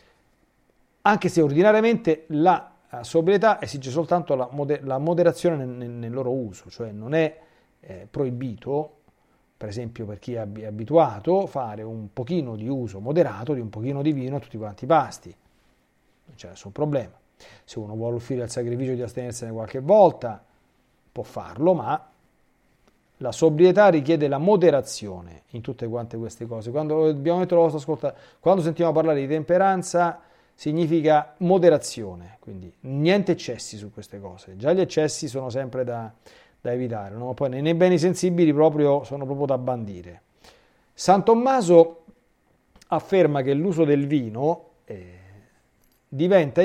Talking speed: 140 wpm